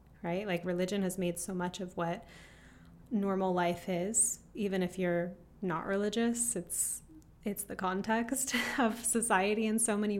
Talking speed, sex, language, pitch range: 155 wpm, female, English, 180-215 Hz